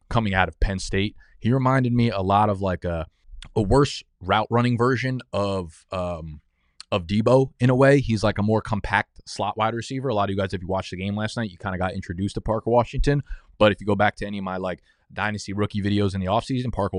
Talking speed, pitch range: 245 wpm, 95-115 Hz